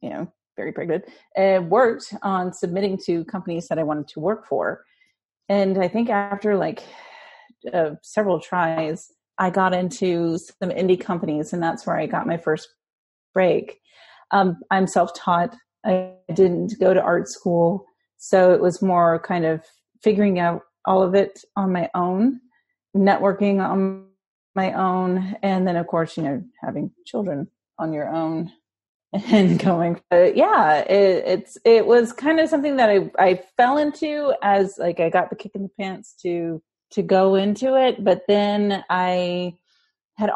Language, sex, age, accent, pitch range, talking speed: English, female, 30-49, American, 170-205 Hz, 160 wpm